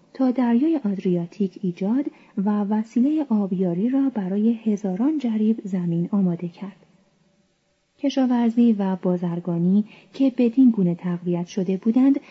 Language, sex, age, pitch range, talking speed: Persian, female, 30-49, 190-245 Hz, 110 wpm